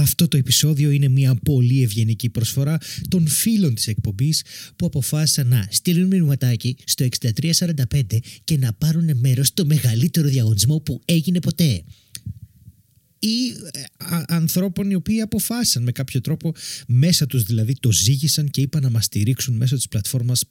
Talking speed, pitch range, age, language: 145 wpm, 115-160 Hz, 30-49, Greek